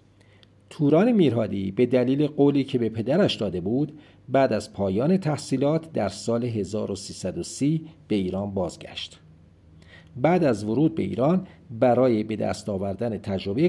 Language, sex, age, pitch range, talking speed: Persian, male, 50-69, 100-150 Hz, 130 wpm